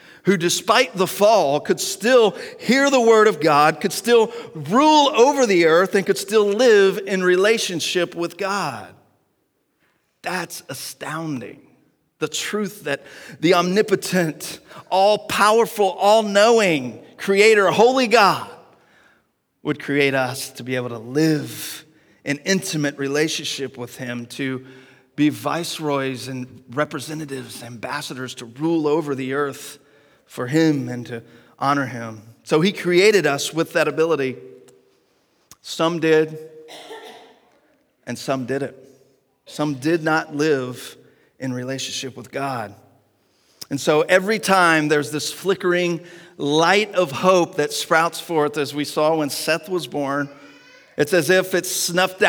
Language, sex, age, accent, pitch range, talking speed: English, male, 40-59, American, 140-190 Hz, 130 wpm